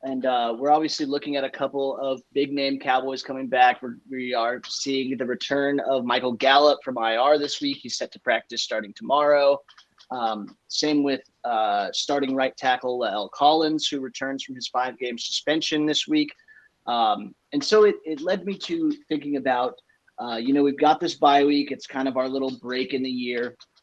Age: 30-49